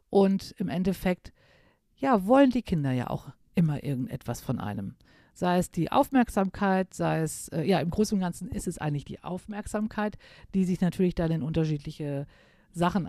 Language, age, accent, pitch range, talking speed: German, 50-69, German, 165-200 Hz, 170 wpm